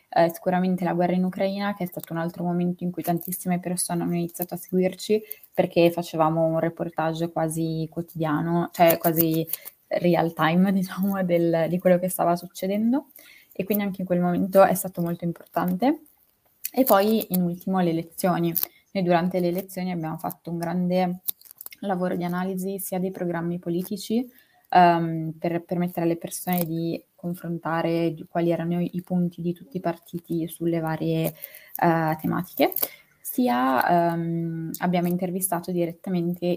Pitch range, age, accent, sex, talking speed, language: 165-180 Hz, 20-39, native, female, 150 wpm, Italian